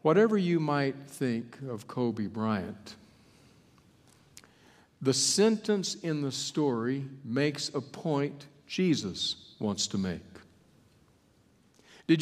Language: English